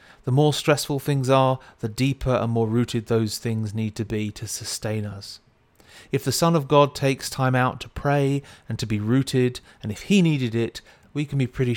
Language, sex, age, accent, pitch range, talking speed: English, male, 40-59, British, 110-130 Hz, 210 wpm